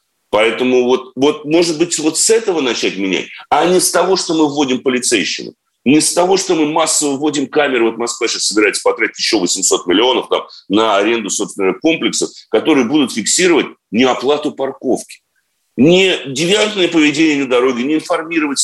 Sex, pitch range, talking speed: male, 115-180 Hz, 165 wpm